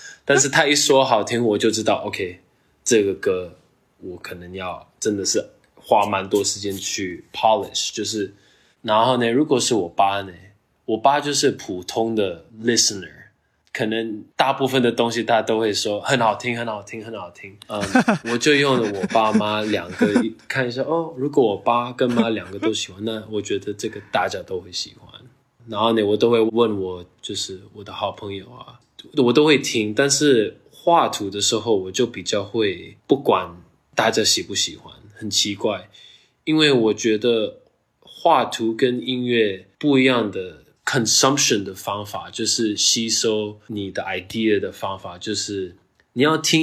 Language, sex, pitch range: Chinese, male, 105-130 Hz